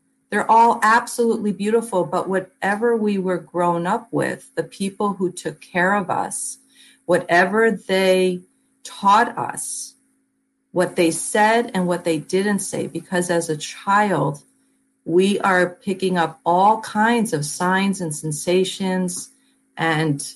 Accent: American